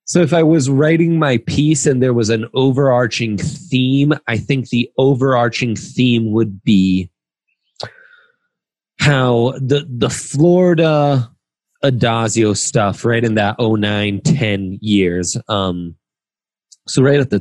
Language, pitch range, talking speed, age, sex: English, 100-135 Hz, 130 wpm, 30-49, male